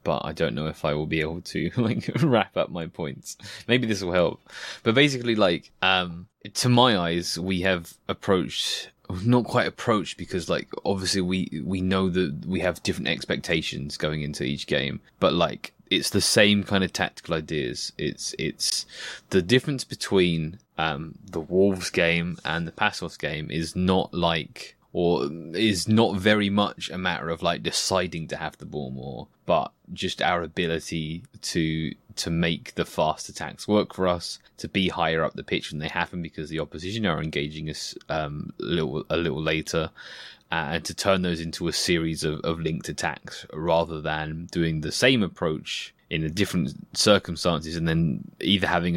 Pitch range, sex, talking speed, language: 80-95 Hz, male, 180 wpm, English